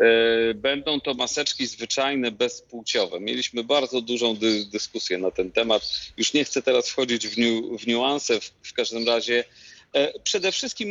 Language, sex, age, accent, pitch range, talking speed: Polish, male, 40-59, native, 115-145 Hz, 155 wpm